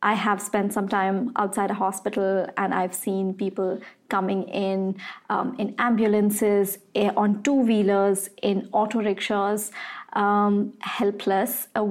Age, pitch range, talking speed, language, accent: 30-49, 200-230 Hz, 130 wpm, English, Indian